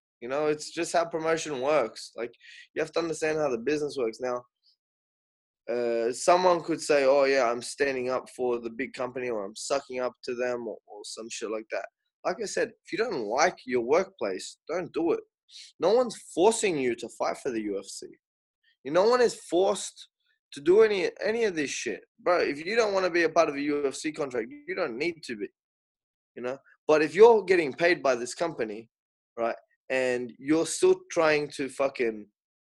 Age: 20-39